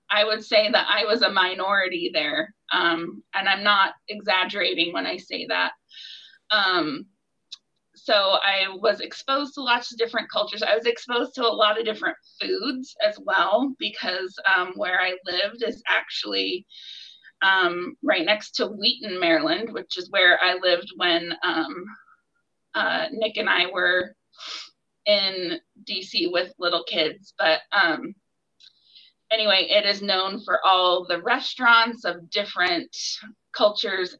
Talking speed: 145 wpm